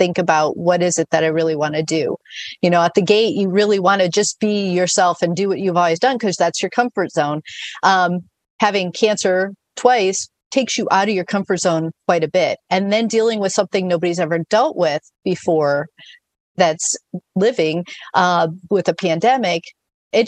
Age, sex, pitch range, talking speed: 40-59, female, 175-210 Hz, 190 wpm